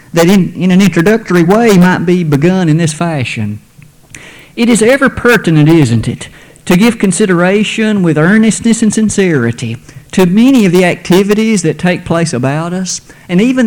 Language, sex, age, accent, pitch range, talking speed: English, male, 50-69, American, 150-205 Hz, 165 wpm